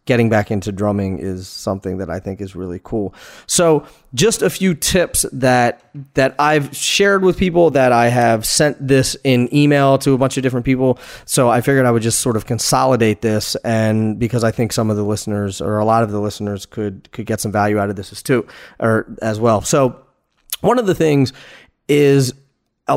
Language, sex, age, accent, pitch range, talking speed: English, male, 30-49, American, 110-140 Hz, 210 wpm